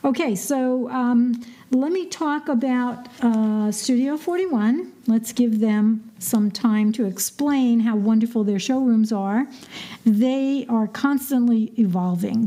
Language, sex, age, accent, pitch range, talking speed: English, female, 60-79, American, 210-255 Hz, 125 wpm